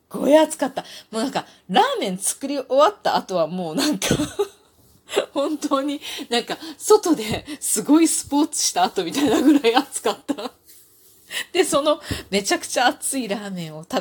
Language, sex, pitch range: Japanese, female, 215-345 Hz